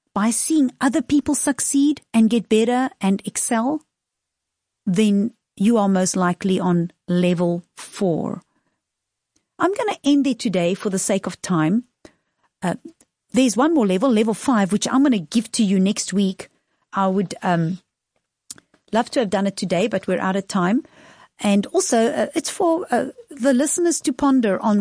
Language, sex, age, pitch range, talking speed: English, female, 50-69, 195-260 Hz, 170 wpm